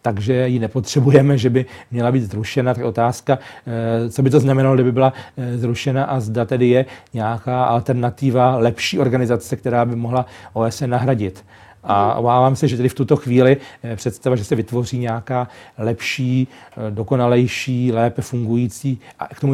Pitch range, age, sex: 120-135 Hz, 40-59, male